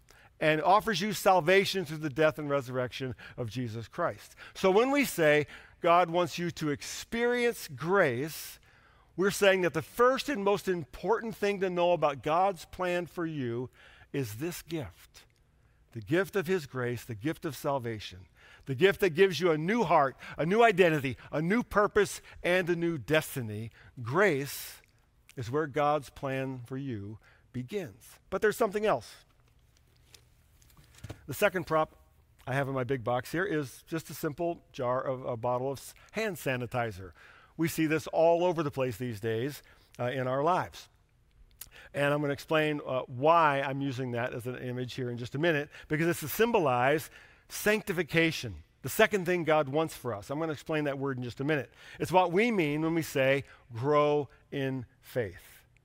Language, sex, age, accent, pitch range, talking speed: English, male, 50-69, American, 125-175 Hz, 175 wpm